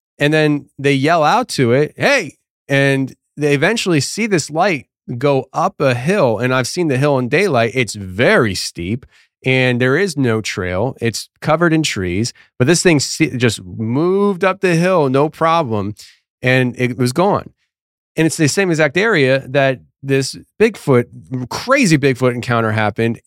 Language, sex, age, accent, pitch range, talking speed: English, male, 30-49, American, 120-155 Hz, 165 wpm